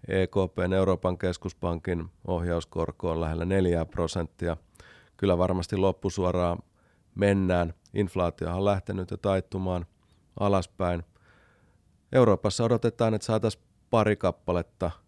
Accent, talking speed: native, 95 wpm